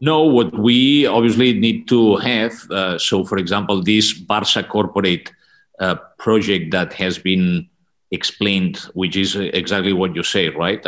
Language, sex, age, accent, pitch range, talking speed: English, male, 40-59, Spanish, 90-105 Hz, 150 wpm